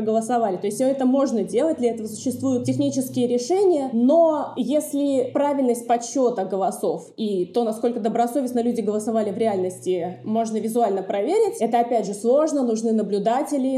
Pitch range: 215-275 Hz